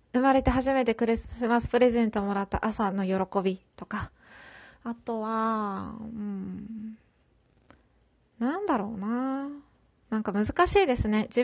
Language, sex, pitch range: Japanese, female, 210-270 Hz